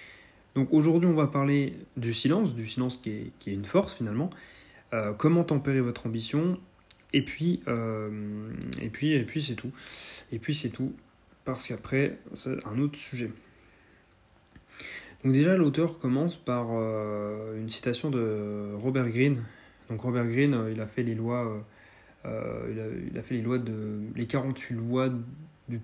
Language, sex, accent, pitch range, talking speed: French, male, French, 110-130 Hz, 140 wpm